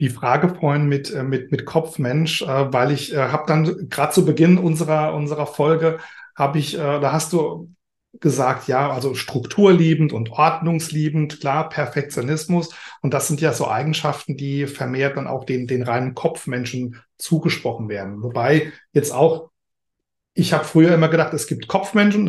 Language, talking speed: German, 155 wpm